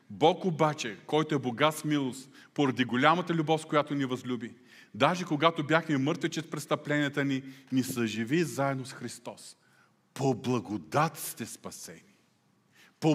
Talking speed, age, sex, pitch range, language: 130 wpm, 40-59, male, 145-205 Hz, Bulgarian